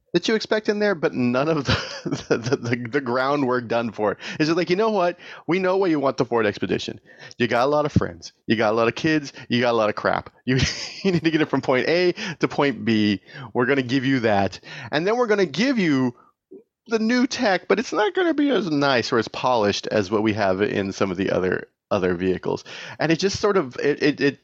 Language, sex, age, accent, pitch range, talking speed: English, male, 30-49, American, 110-165 Hz, 255 wpm